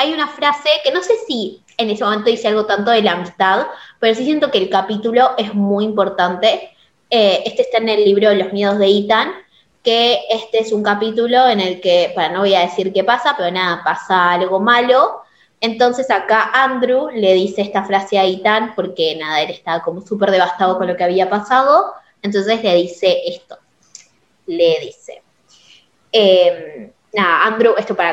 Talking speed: 190 wpm